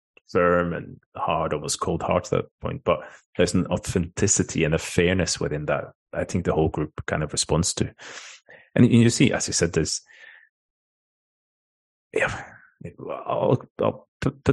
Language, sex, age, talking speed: English, male, 30-49, 155 wpm